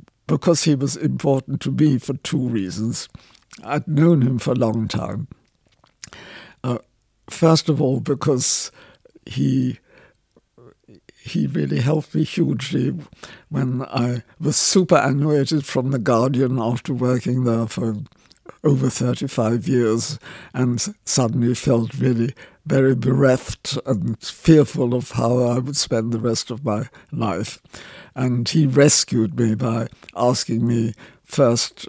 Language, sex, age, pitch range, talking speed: English, male, 60-79, 115-140 Hz, 125 wpm